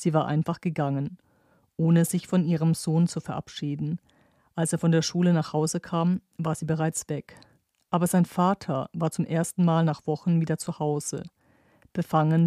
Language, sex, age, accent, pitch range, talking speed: German, female, 40-59, German, 150-170 Hz, 175 wpm